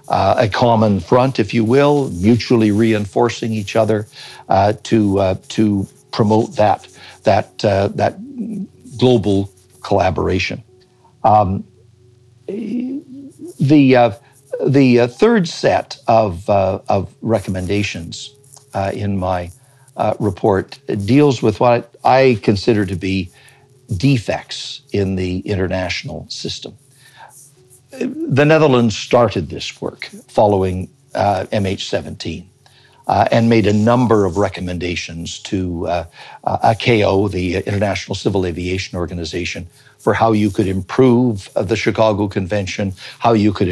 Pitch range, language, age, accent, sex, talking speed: 100-130 Hz, English, 60-79, American, male, 115 wpm